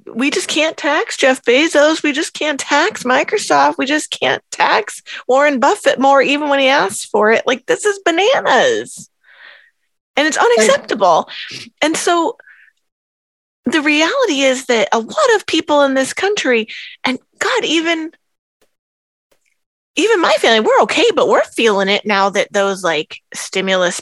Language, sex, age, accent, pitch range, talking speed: English, female, 20-39, American, 200-330 Hz, 150 wpm